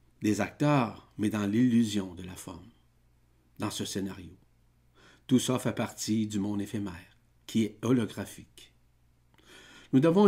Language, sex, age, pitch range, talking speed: French, male, 50-69, 95-130 Hz, 135 wpm